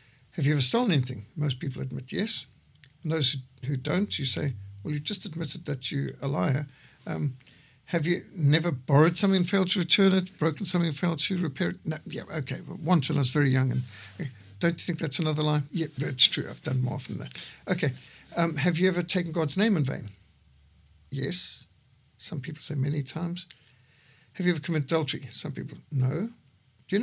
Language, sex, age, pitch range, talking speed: English, male, 60-79, 130-175 Hz, 210 wpm